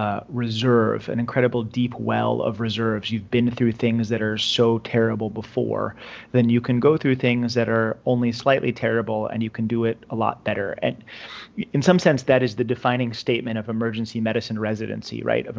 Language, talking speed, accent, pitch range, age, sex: English, 195 wpm, American, 110-120 Hz, 30-49, male